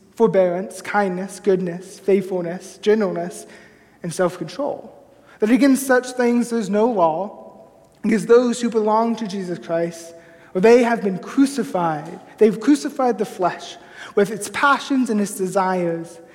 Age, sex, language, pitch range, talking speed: 20-39, male, English, 185-235 Hz, 130 wpm